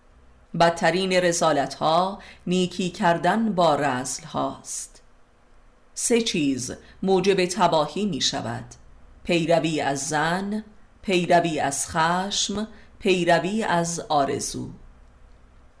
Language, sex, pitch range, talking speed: Persian, female, 130-185 Hz, 85 wpm